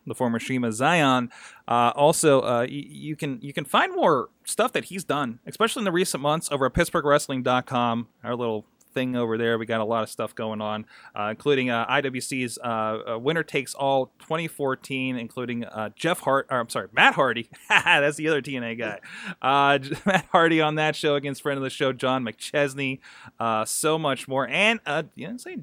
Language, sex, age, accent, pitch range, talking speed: English, male, 30-49, American, 120-155 Hz, 195 wpm